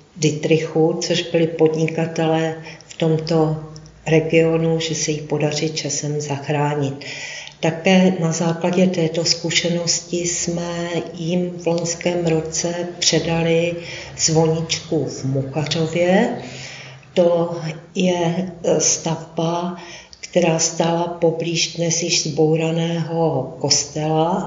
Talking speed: 90 wpm